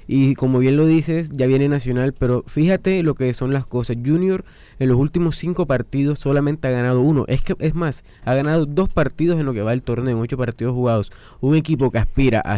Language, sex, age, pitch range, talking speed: Spanish, male, 20-39, 120-150 Hz, 225 wpm